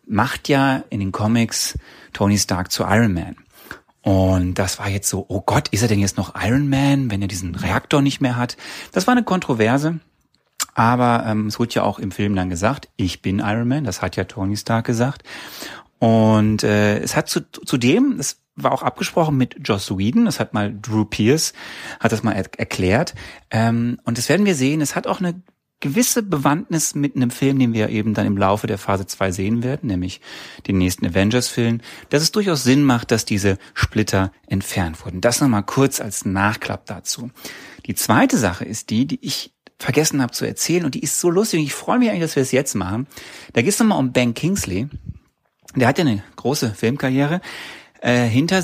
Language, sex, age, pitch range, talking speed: German, male, 30-49, 100-145 Hz, 200 wpm